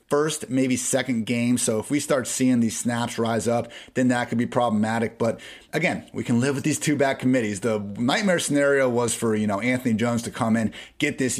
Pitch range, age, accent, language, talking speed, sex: 110-130 Hz, 30-49, American, English, 220 wpm, male